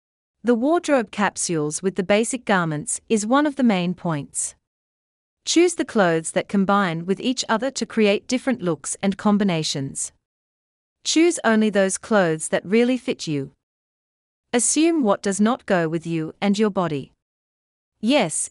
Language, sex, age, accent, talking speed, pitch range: English, female, 40-59, Australian, 150 wpm, 150-240 Hz